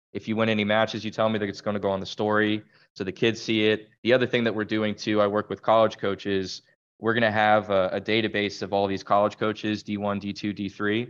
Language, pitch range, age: English, 100-110 Hz, 20-39